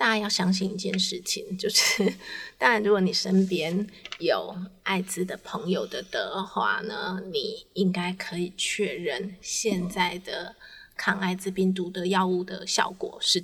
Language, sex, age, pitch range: Chinese, female, 20-39, 190-215 Hz